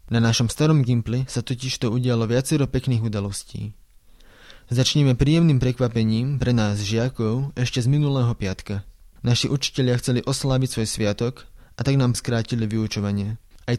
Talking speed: 145 wpm